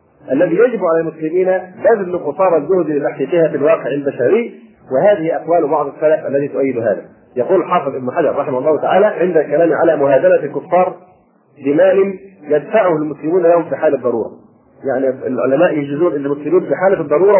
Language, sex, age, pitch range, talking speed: Arabic, male, 40-59, 155-210 Hz, 155 wpm